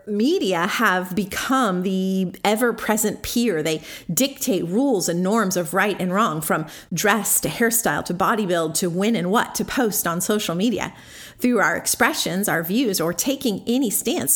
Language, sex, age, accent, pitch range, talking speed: English, female, 40-59, American, 180-230 Hz, 165 wpm